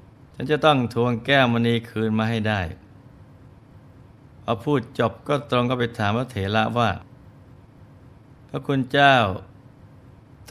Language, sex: Thai, male